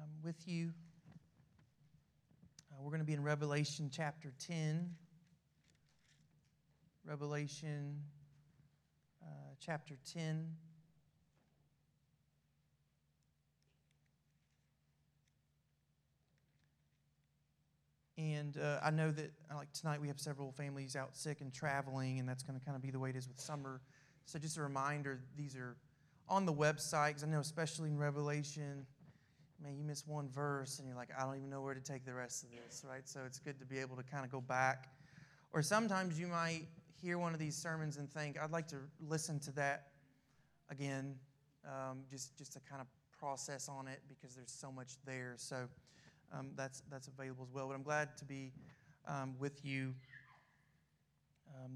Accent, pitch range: American, 135-155 Hz